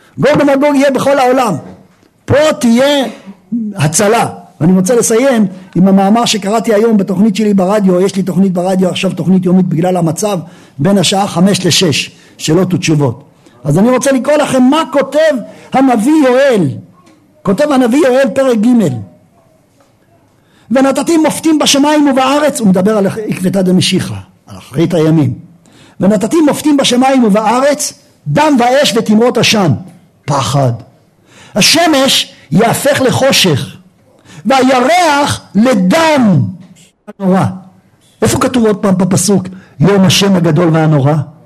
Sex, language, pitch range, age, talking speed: male, Hebrew, 180-270 Hz, 50-69, 120 wpm